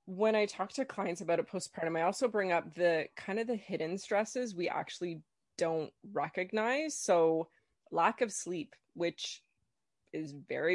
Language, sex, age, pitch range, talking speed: English, female, 20-39, 160-200 Hz, 160 wpm